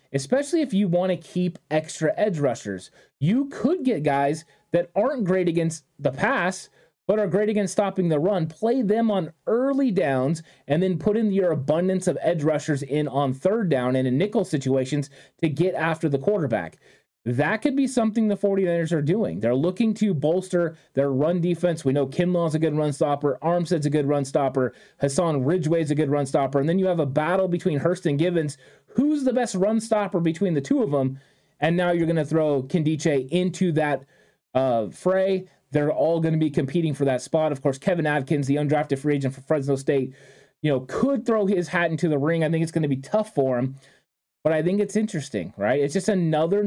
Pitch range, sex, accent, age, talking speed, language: 145-195 Hz, male, American, 30-49, 210 wpm, English